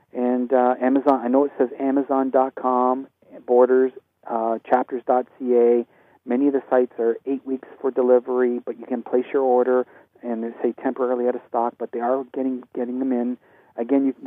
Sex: male